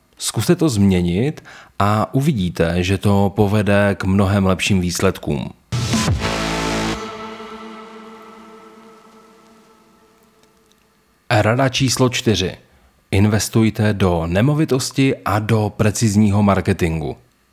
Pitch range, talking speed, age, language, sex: 100-140 Hz, 75 wpm, 40-59, Czech, male